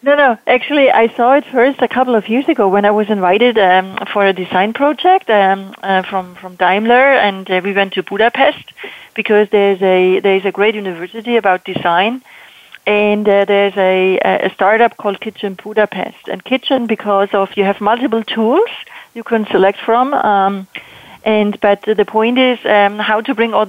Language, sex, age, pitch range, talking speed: English, female, 40-59, 195-230 Hz, 185 wpm